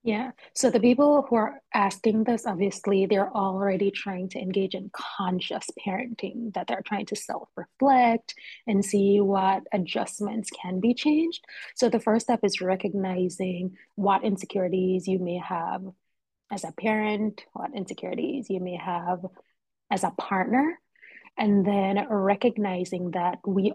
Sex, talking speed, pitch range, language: female, 140 wpm, 185-220 Hz, English